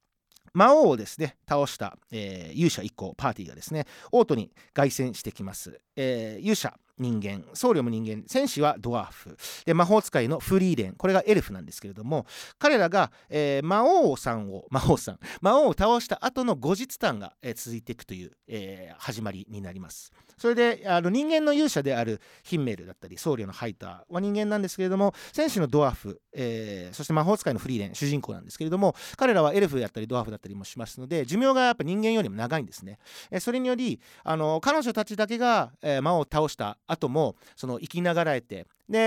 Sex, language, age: male, Japanese, 40-59